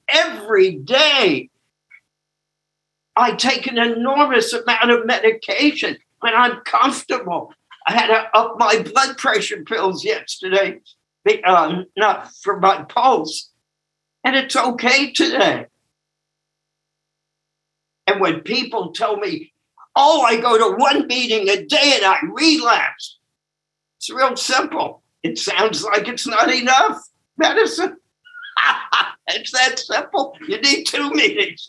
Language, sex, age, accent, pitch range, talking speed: English, male, 60-79, American, 190-310 Hz, 120 wpm